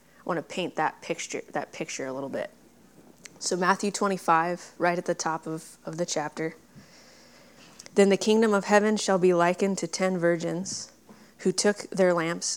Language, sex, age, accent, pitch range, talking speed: English, female, 20-39, American, 165-195 Hz, 175 wpm